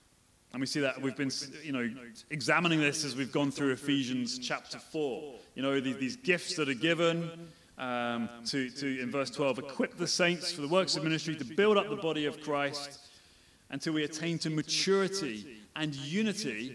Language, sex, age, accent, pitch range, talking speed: English, male, 30-49, British, 115-160 Hz, 185 wpm